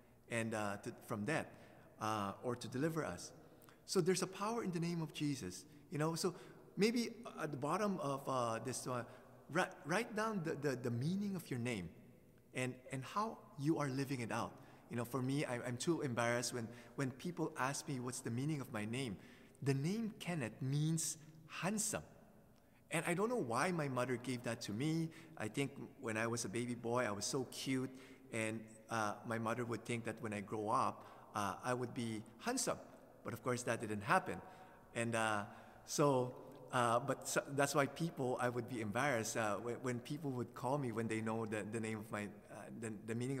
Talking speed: 200 wpm